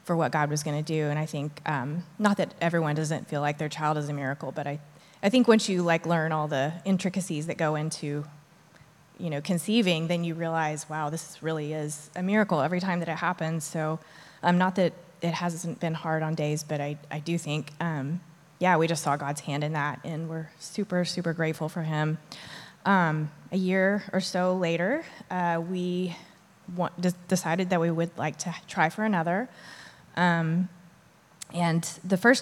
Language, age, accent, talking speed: English, 20-39, American, 195 wpm